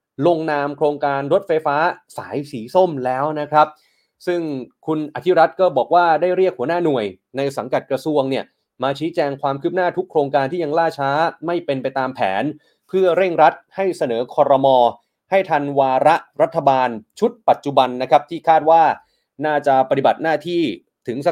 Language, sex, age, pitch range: Thai, male, 30-49, 135-170 Hz